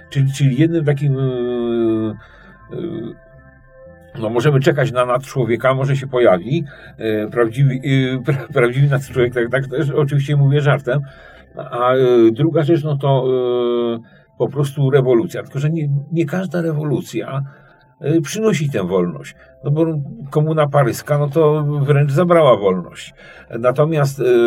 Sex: male